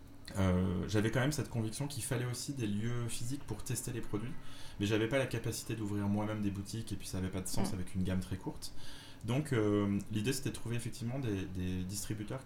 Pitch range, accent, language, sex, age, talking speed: 100-120 Hz, French, French, male, 20-39, 225 wpm